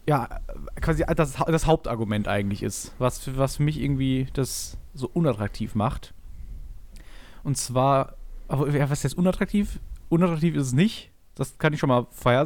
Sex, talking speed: male, 160 wpm